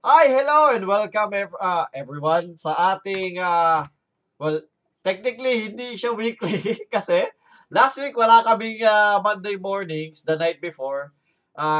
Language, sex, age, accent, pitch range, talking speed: Filipino, male, 20-39, native, 160-220 Hz, 130 wpm